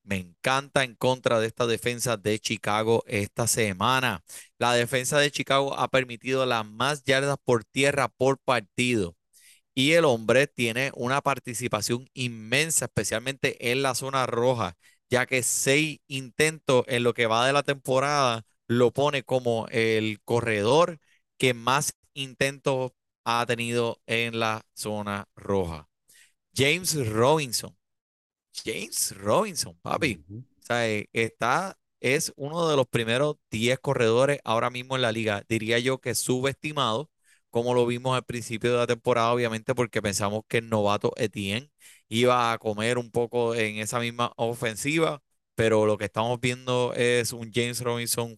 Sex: male